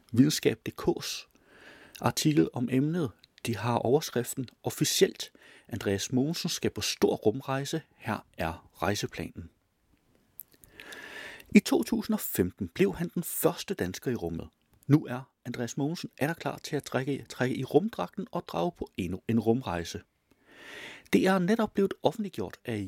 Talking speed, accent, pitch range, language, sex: 135 wpm, native, 110-175 Hz, Danish, male